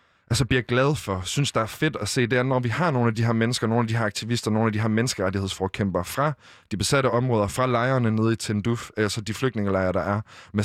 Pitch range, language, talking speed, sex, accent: 115-150 Hz, Danish, 255 wpm, male, native